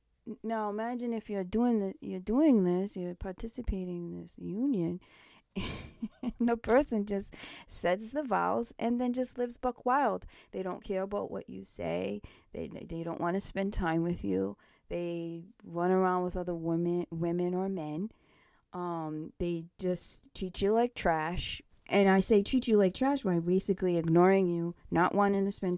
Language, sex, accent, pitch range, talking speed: English, female, American, 170-220 Hz, 170 wpm